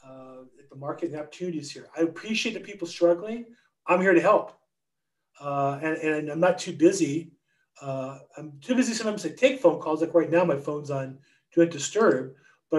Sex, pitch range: male, 155-195 Hz